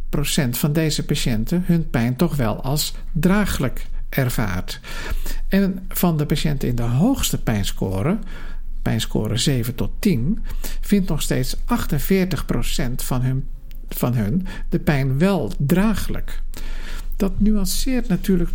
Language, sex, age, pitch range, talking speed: Dutch, male, 50-69, 120-175 Hz, 125 wpm